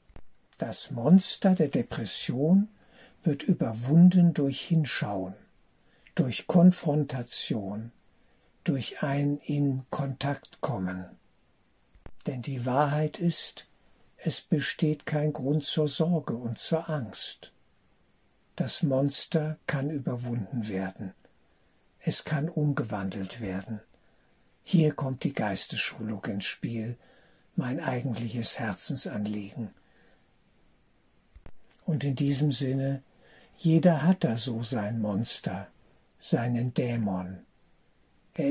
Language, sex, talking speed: German, male, 90 wpm